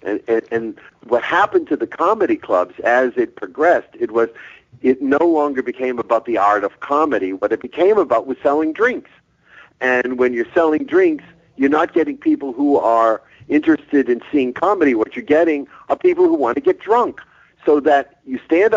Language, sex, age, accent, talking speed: English, male, 50-69, American, 190 wpm